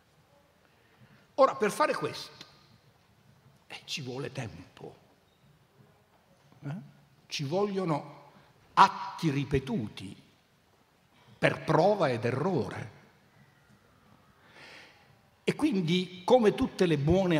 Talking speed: 80 wpm